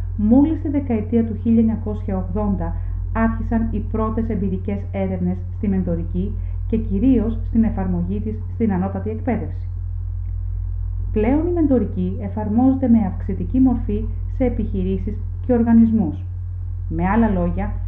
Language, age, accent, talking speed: Greek, 40-59, native, 115 wpm